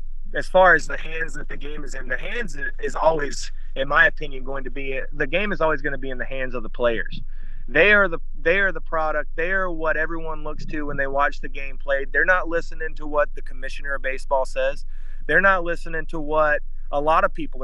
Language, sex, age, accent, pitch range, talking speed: English, male, 30-49, American, 140-170 Hz, 245 wpm